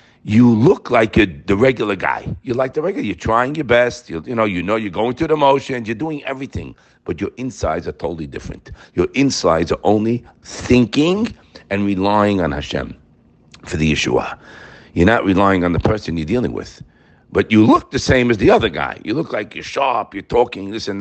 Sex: male